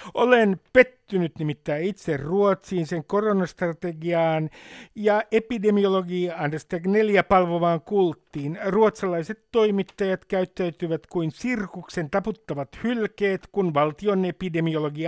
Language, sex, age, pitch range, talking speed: Finnish, male, 60-79, 165-205 Hz, 90 wpm